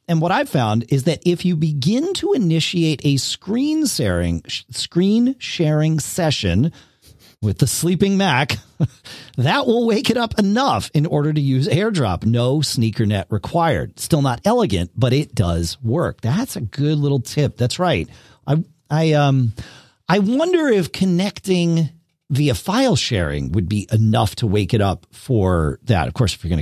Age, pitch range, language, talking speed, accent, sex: 40-59, 105-155 Hz, English, 170 wpm, American, male